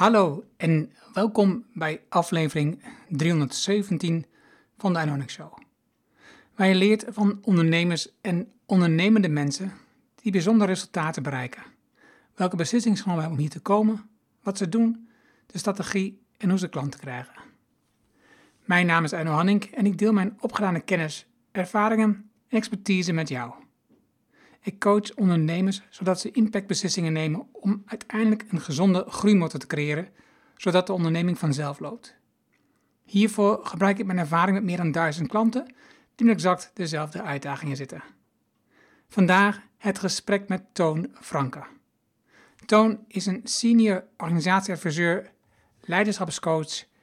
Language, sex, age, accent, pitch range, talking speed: Dutch, male, 60-79, Dutch, 165-210 Hz, 130 wpm